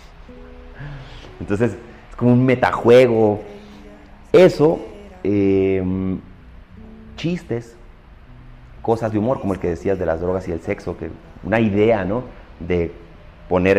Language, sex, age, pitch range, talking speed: Spanish, male, 30-49, 85-115 Hz, 115 wpm